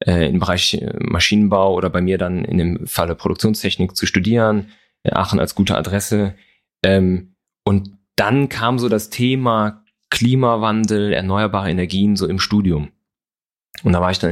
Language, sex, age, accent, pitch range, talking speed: German, male, 30-49, German, 95-110 Hz, 145 wpm